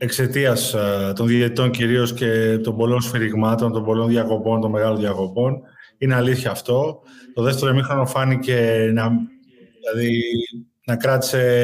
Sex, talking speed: male, 125 wpm